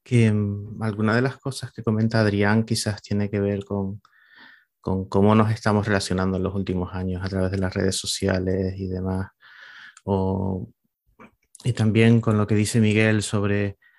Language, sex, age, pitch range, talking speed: Spanish, male, 30-49, 100-110 Hz, 165 wpm